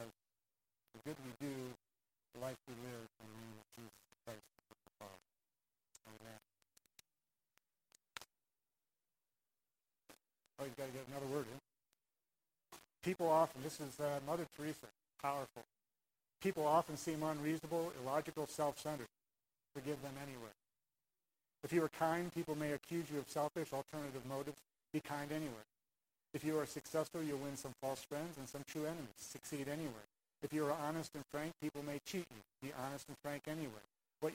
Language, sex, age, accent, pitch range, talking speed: English, male, 50-69, American, 130-155 Hz, 145 wpm